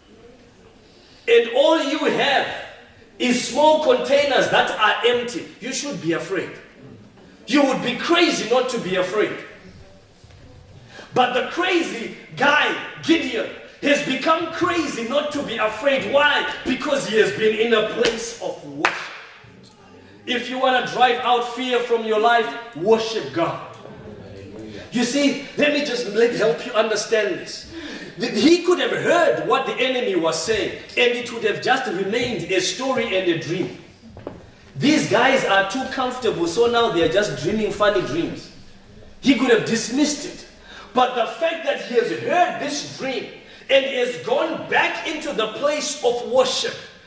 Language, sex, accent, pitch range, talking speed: English, male, South African, 215-290 Hz, 155 wpm